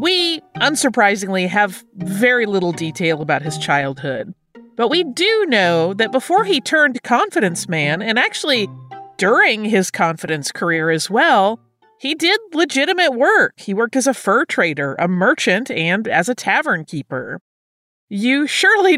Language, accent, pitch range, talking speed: English, American, 170-250 Hz, 145 wpm